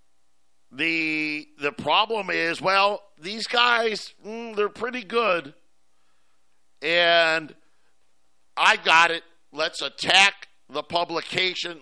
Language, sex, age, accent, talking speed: English, male, 50-69, American, 95 wpm